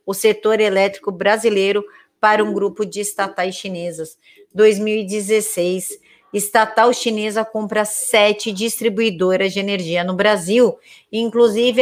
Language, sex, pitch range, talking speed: Portuguese, female, 195-235 Hz, 105 wpm